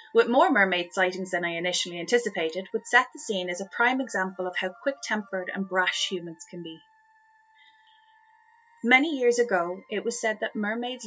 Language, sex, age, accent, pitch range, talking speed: English, female, 30-49, Irish, 185-260 Hz, 175 wpm